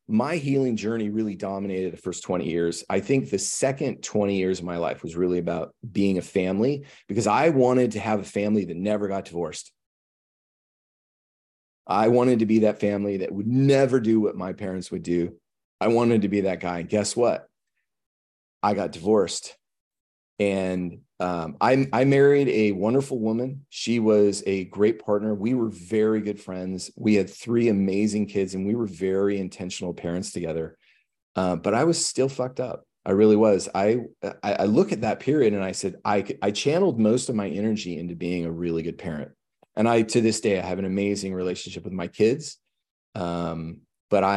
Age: 30-49